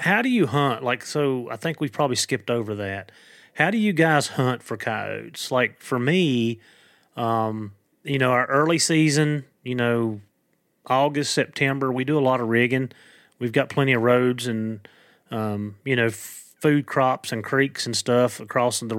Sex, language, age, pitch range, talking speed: male, English, 30-49, 115-140 Hz, 175 wpm